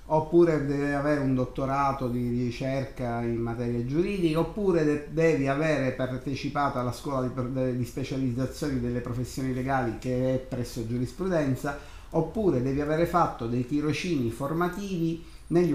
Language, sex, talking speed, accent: Italian, male, 125 wpm, native